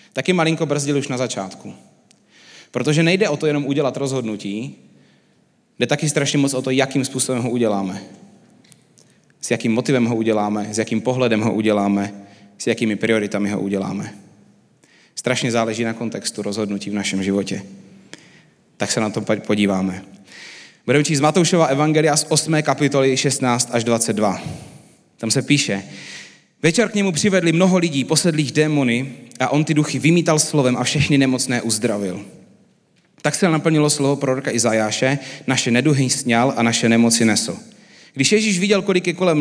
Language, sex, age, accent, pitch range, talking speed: Czech, male, 30-49, native, 110-150 Hz, 155 wpm